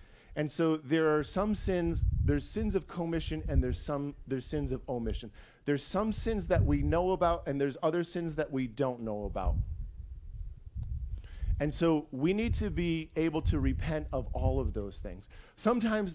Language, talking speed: English, 180 wpm